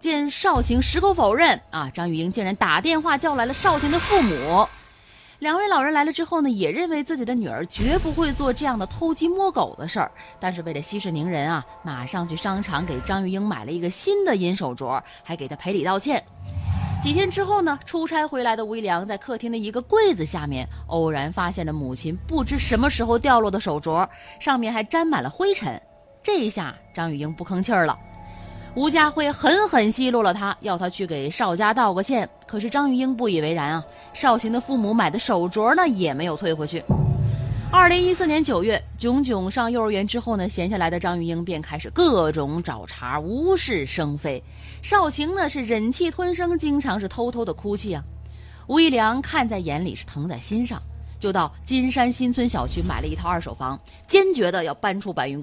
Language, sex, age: Chinese, female, 20-39